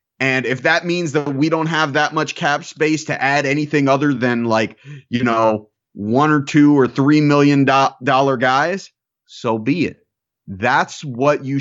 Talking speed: 170 wpm